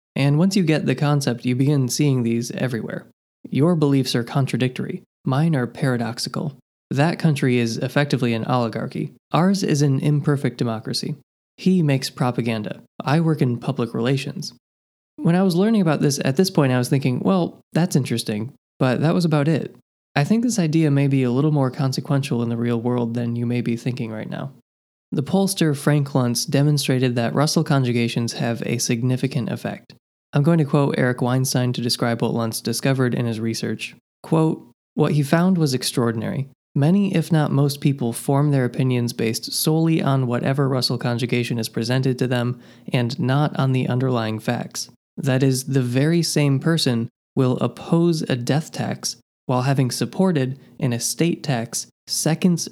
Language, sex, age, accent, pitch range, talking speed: English, male, 20-39, American, 120-150 Hz, 175 wpm